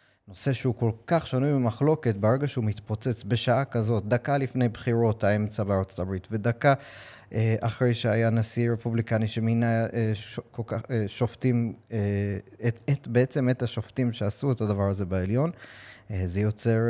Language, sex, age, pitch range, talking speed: Hebrew, male, 30-49, 105-125 Hz, 155 wpm